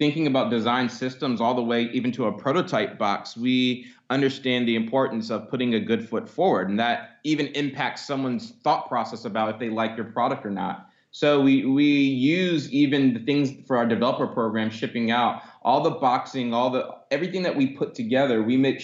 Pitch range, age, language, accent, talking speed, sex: 115-140 Hz, 30-49, English, American, 200 wpm, male